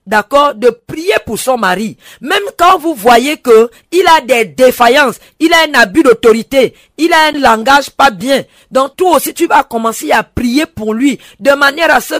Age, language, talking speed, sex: 40-59, French, 195 wpm, female